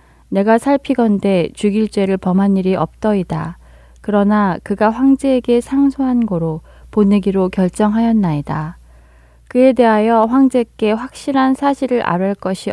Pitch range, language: 175-220 Hz, Korean